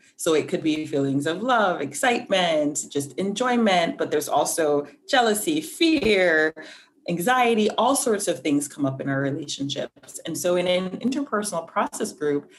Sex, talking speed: female, 155 wpm